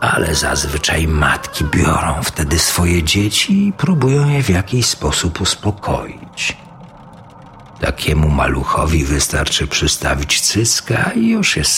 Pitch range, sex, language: 75-120 Hz, male, Polish